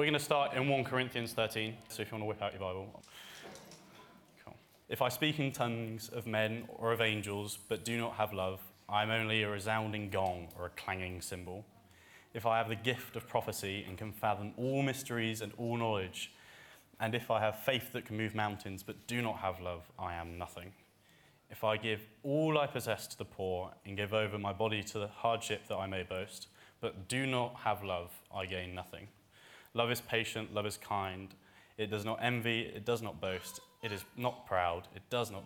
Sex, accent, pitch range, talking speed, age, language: male, British, 95-115 Hz, 210 wpm, 20-39, English